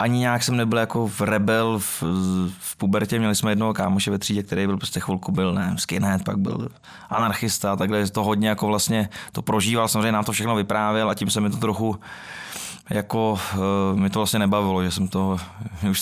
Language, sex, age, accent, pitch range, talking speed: Czech, male, 20-39, native, 95-110 Hz, 200 wpm